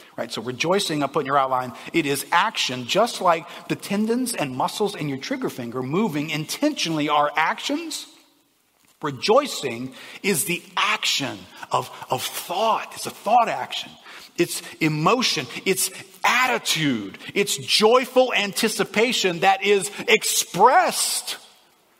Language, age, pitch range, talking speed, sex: English, 50-69, 185-260 Hz, 125 wpm, male